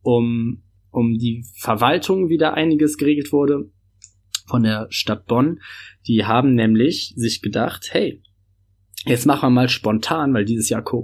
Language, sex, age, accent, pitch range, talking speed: German, male, 20-39, German, 110-130 Hz, 145 wpm